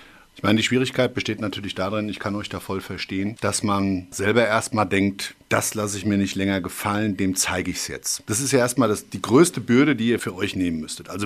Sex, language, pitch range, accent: male, German, 95-120 Hz, German